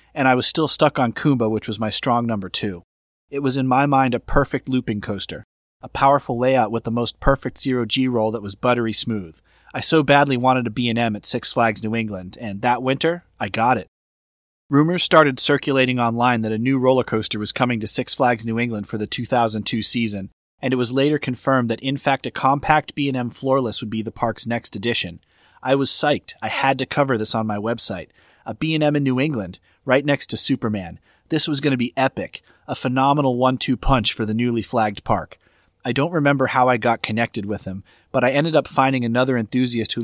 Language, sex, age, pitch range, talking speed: English, male, 30-49, 110-135 Hz, 215 wpm